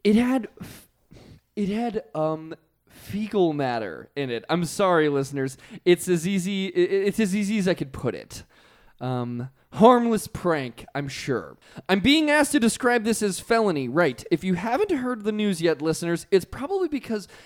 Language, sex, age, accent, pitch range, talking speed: English, male, 20-39, American, 140-225 Hz, 165 wpm